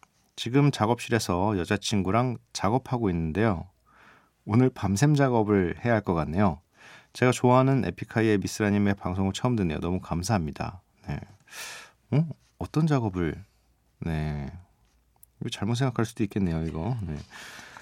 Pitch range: 90-125 Hz